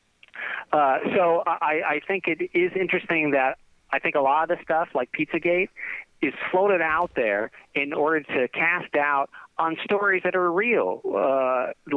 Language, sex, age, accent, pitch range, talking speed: English, male, 40-59, American, 135-180 Hz, 165 wpm